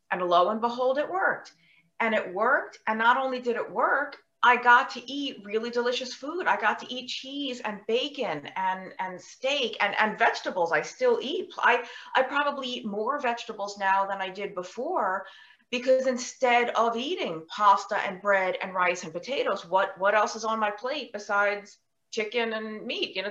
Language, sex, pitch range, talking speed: English, female, 190-255 Hz, 190 wpm